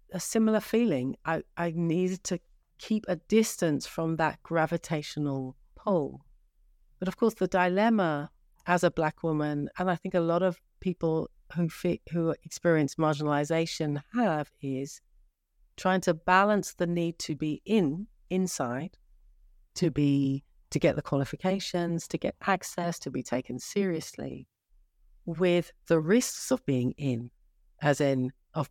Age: 40-59